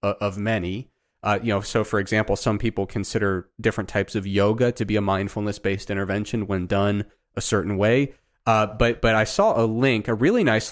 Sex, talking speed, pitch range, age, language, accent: male, 195 wpm, 100-115 Hz, 30-49, English, American